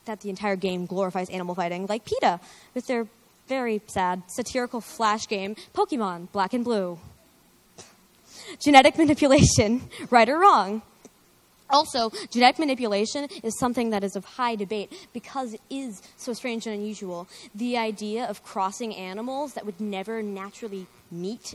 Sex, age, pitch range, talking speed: female, 20-39, 195-245 Hz, 145 wpm